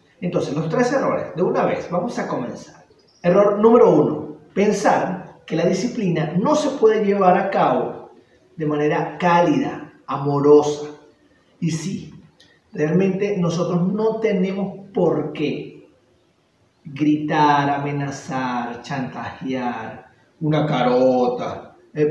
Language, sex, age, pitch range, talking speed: Spanish, male, 30-49, 145-180 Hz, 110 wpm